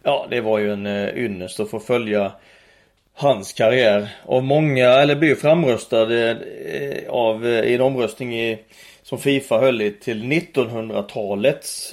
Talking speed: 145 wpm